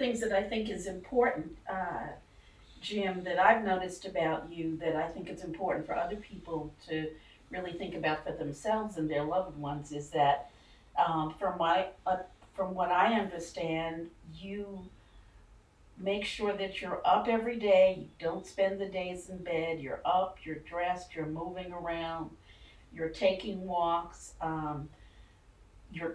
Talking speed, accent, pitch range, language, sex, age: 160 wpm, American, 160-195 Hz, English, female, 50-69